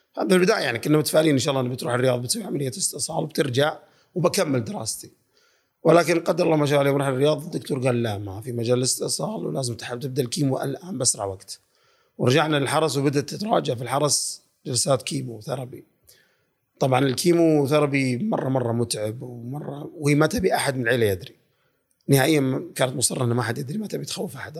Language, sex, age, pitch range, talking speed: Arabic, male, 30-49, 125-155 Hz, 175 wpm